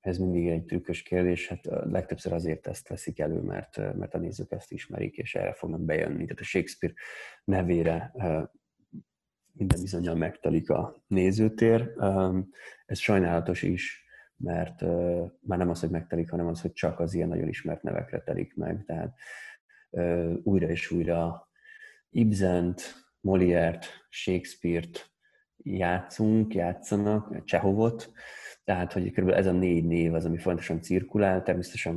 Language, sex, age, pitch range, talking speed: Hungarian, male, 30-49, 85-100 Hz, 145 wpm